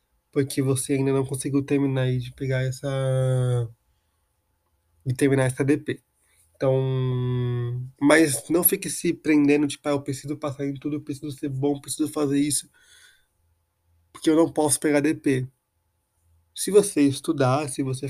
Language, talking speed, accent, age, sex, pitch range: Portuguese, 160 wpm, Brazilian, 20-39, male, 130-145 Hz